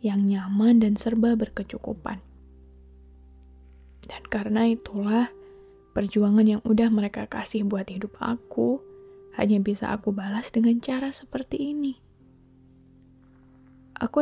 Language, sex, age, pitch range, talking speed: Indonesian, female, 20-39, 185-225 Hz, 105 wpm